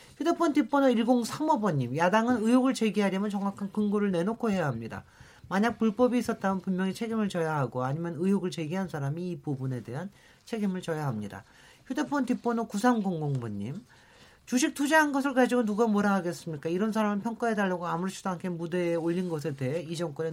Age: 40-59